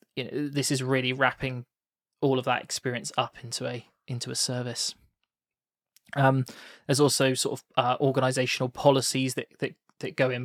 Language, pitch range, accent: English, 125-135 Hz, British